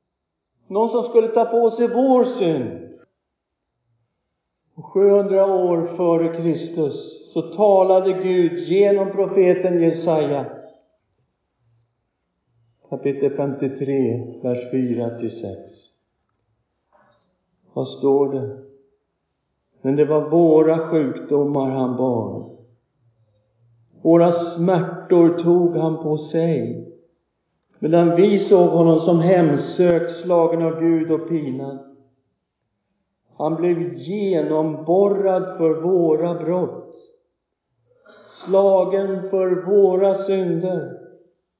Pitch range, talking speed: 140-195 Hz, 85 wpm